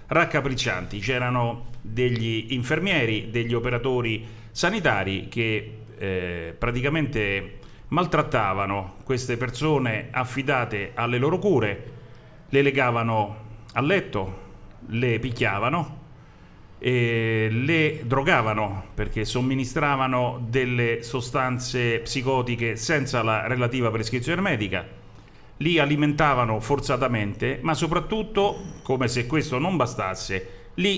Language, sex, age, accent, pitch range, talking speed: Italian, male, 40-59, native, 110-150 Hz, 90 wpm